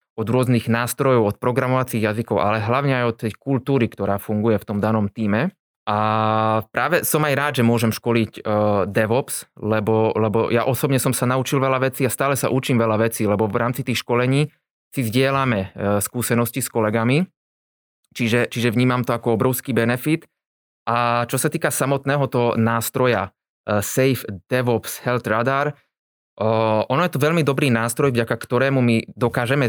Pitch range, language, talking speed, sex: 110-135 Hz, Slovak, 165 wpm, male